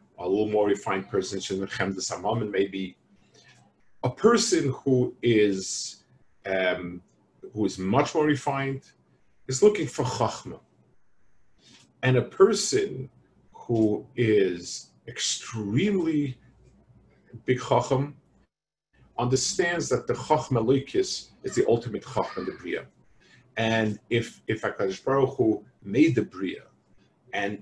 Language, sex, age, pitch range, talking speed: English, male, 50-69, 105-145 Hz, 115 wpm